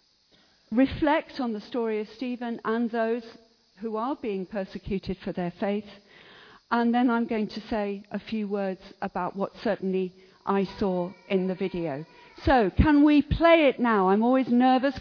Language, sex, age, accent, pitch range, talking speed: English, female, 50-69, British, 195-240 Hz, 165 wpm